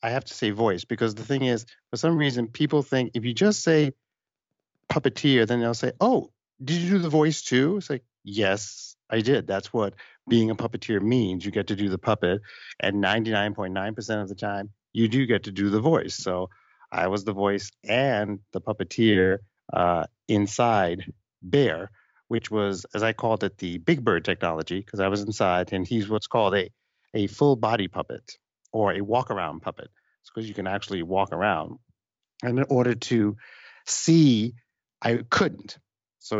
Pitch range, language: 100-130 Hz, English